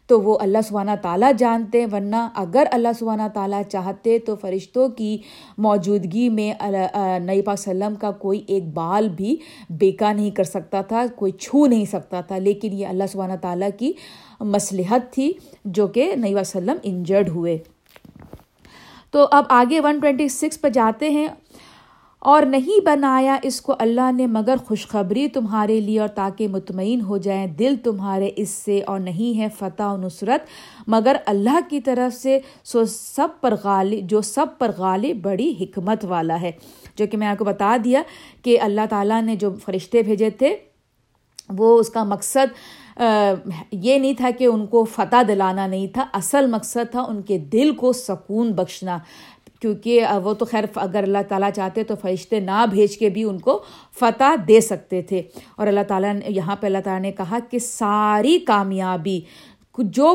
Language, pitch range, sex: Urdu, 195-250 Hz, female